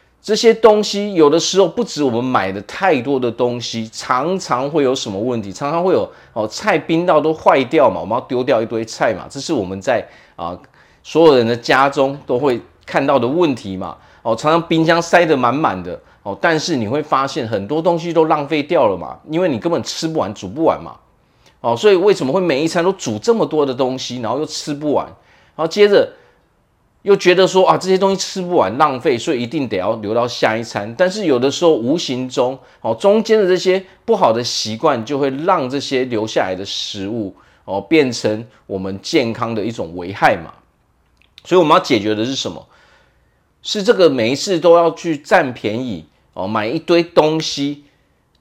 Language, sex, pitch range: Chinese, male, 120-175 Hz